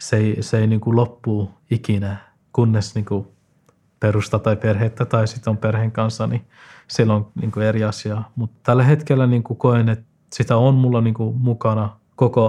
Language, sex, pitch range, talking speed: Finnish, male, 105-125 Hz, 170 wpm